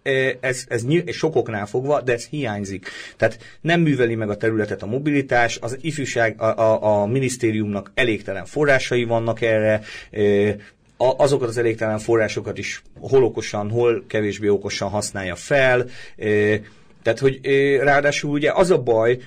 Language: Hungarian